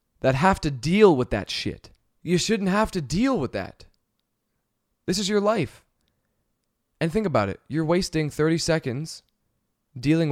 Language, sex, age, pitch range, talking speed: English, male, 20-39, 125-175 Hz, 155 wpm